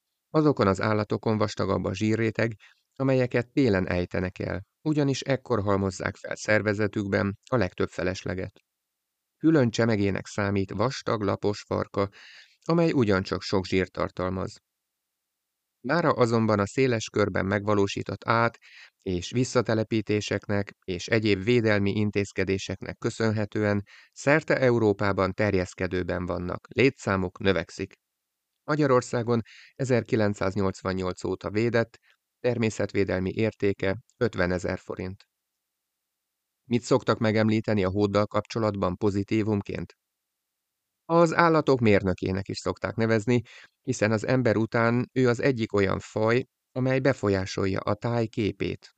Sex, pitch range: male, 95-115 Hz